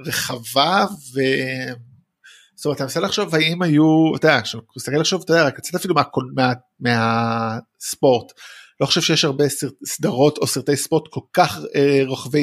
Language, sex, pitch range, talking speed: Hebrew, male, 130-165 Hz, 155 wpm